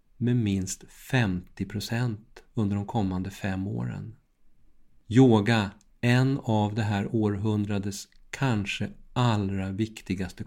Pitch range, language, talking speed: 100-115 Hz, Swedish, 95 wpm